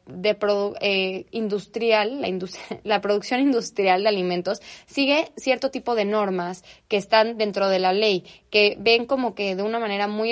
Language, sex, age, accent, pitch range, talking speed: Spanish, female, 20-39, Mexican, 190-230 Hz, 175 wpm